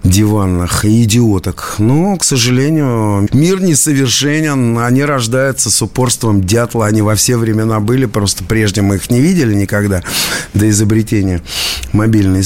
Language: Russian